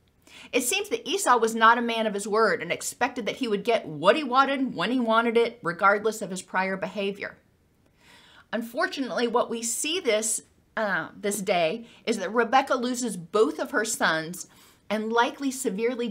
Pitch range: 205-245 Hz